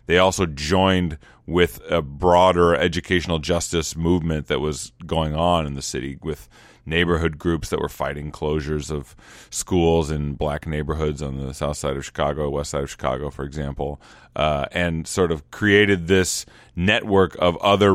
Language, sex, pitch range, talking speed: English, male, 75-90 Hz, 165 wpm